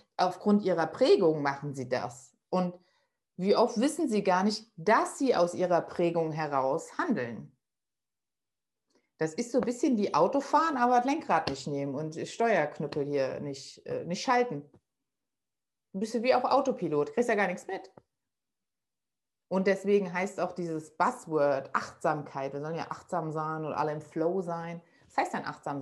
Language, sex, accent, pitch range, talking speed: German, female, German, 140-200 Hz, 165 wpm